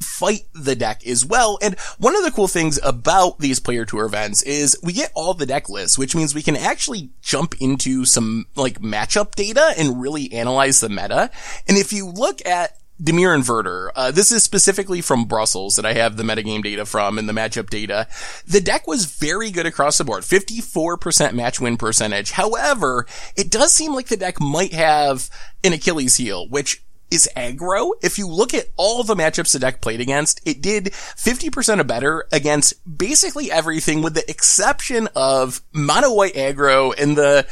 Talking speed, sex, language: 185 wpm, male, English